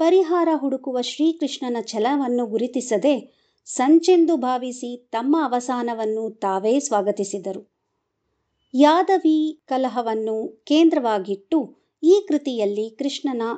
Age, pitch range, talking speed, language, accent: 50-69, 235-320 Hz, 75 wpm, Kannada, native